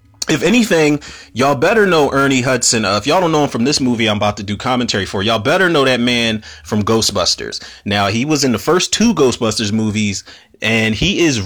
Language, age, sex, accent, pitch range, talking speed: English, 30-49, male, American, 105-130 Hz, 215 wpm